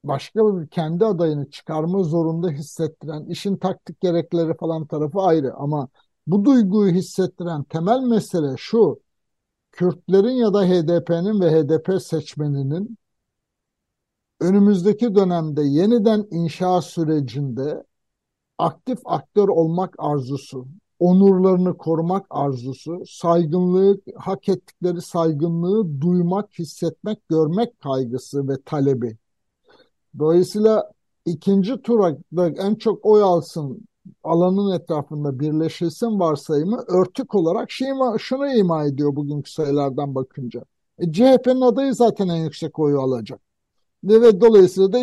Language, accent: Turkish, native